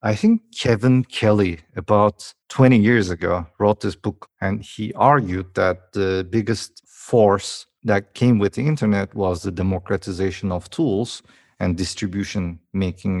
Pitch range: 90-115 Hz